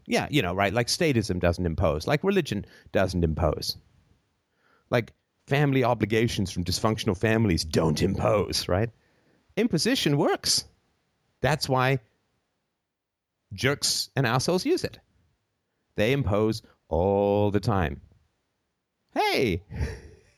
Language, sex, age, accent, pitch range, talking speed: English, male, 30-49, American, 100-155 Hz, 105 wpm